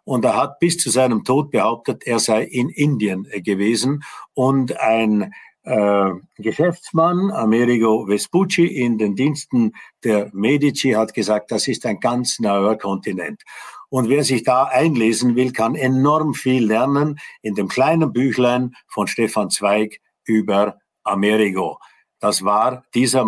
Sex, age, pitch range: male, 50-69, 105-140 Hz